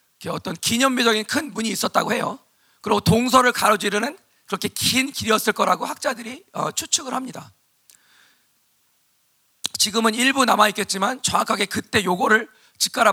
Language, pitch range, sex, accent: Korean, 205-255 Hz, male, native